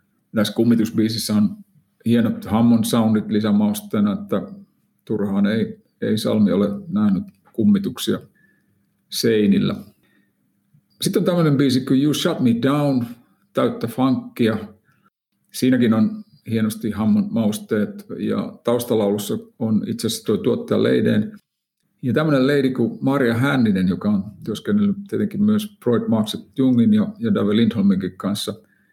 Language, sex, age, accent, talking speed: Finnish, male, 50-69, native, 110 wpm